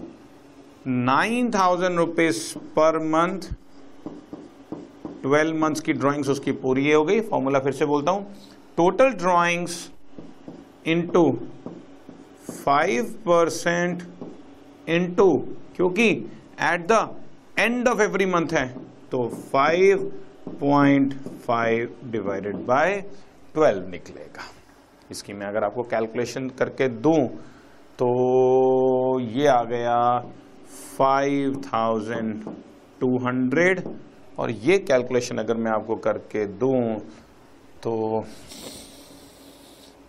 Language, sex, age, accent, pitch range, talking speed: Hindi, male, 50-69, native, 125-170 Hz, 85 wpm